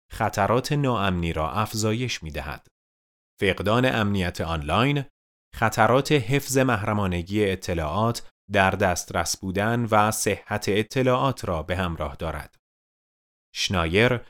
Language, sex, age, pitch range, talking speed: Persian, male, 30-49, 95-130 Hz, 95 wpm